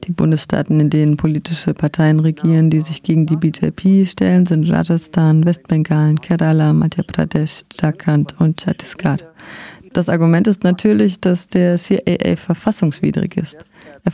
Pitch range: 155-190 Hz